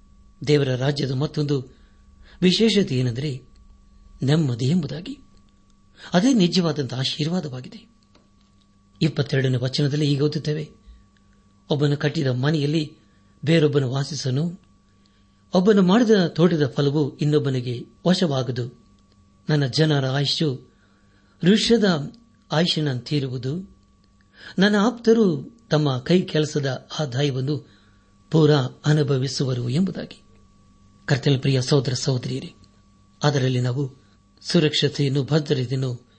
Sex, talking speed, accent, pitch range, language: male, 75 wpm, native, 105-150 Hz, Kannada